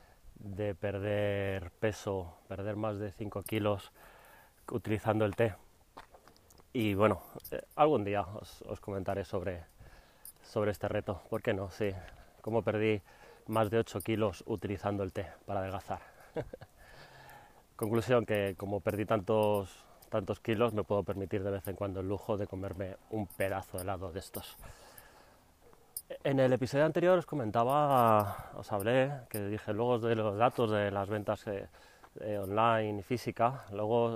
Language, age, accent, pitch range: Spanish, 30-49, Spanish, 100-115 Hz